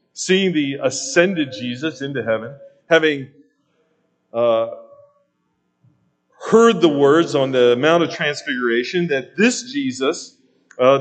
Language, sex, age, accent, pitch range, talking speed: English, male, 40-59, American, 145-205 Hz, 110 wpm